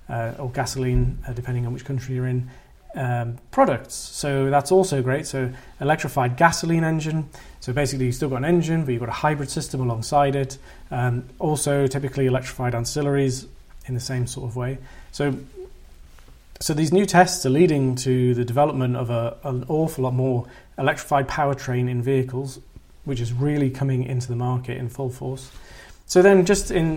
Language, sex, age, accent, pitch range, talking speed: English, male, 30-49, British, 125-145 Hz, 180 wpm